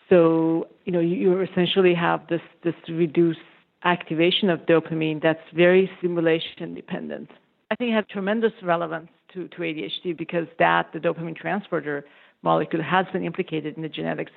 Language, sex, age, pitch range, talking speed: English, female, 50-69, 160-185 Hz, 155 wpm